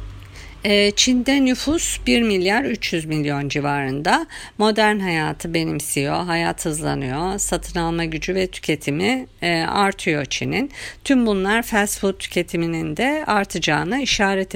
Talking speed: 110 wpm